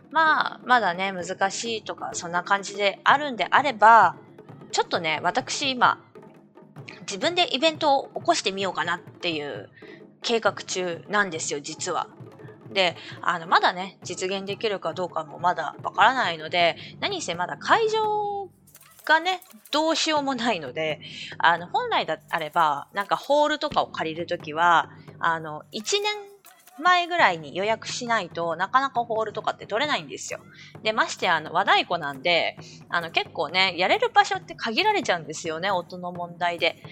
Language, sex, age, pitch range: Japanese, female, 20-39, 170-245 Hz